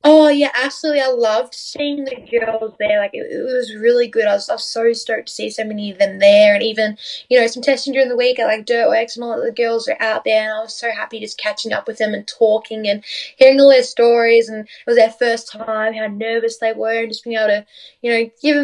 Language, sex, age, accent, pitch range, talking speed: English, female, 10-29, Australian, 215-260 Hz, 260 wpm